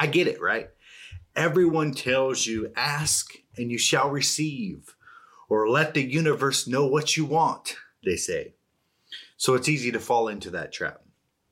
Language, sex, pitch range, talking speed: English, male, 115-155 Hz, 155 wpm